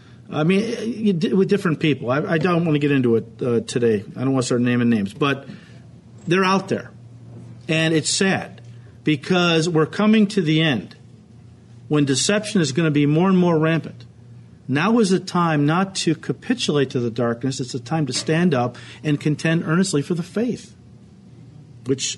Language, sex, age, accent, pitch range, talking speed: English, male, 50-69, American, 130-190 Hz, 185 wpm